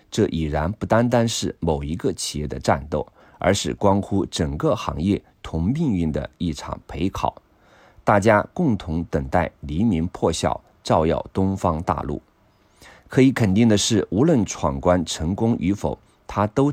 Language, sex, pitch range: Chinese, male, 80-110 Hz